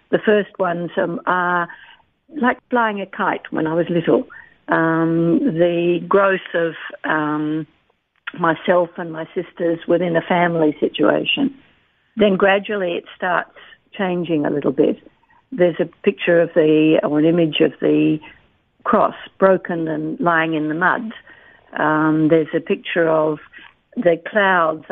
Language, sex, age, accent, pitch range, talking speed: English, female, 50-69, Australian, 160-185 Hz, 135 wpm